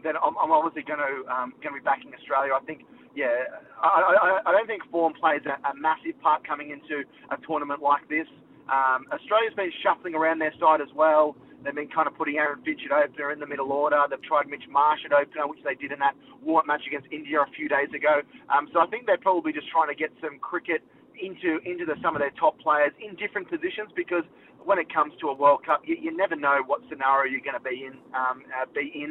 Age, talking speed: 20-39, 245 wpm